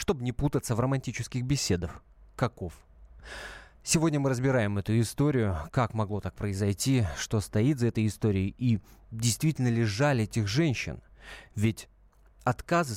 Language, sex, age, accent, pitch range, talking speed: Russian, male, 30-49, native, 90-125 Hz, 135 wpm